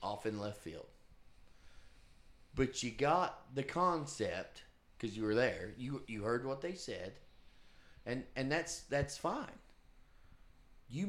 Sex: male